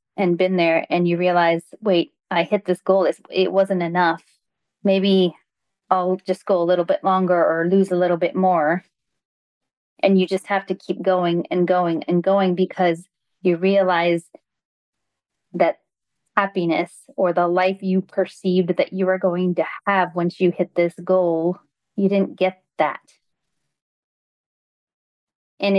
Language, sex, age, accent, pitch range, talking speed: English, female, 30-49, American, 170-190 Hz, 150 wpm